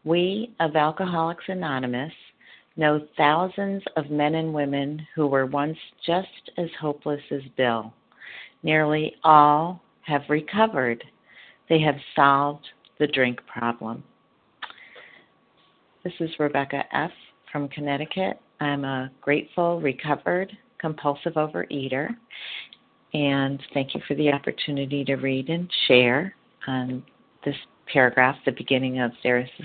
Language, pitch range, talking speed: English, 130-155 Hz, 120 wpm